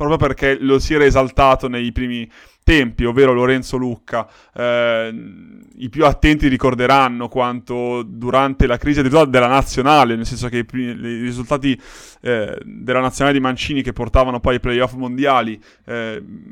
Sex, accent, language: male, native, Italian